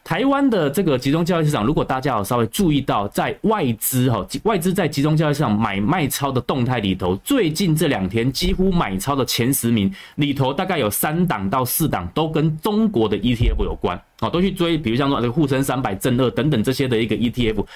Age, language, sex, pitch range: 20-39, Chinese, male, 115-160 Hz